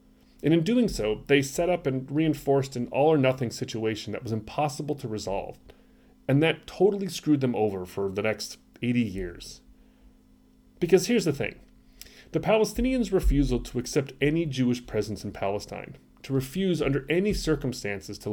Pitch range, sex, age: 105-150 Hz, male, 30-49